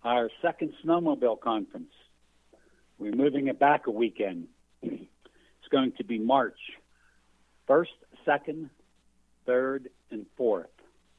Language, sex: English, male